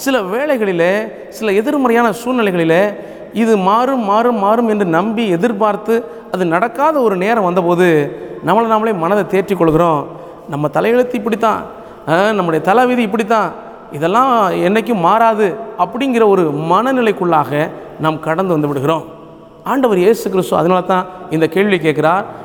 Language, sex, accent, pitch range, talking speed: Tamil, male, native, 165-230 Hz, 120 wpm